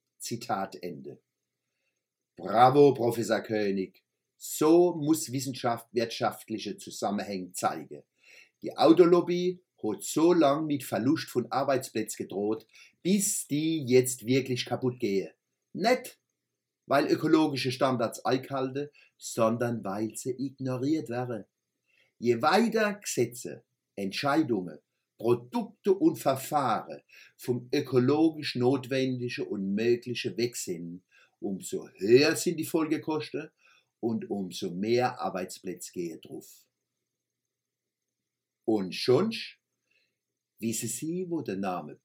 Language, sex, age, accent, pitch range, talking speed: German, male, 50-69, German, 110-155 Hz, 100 wpm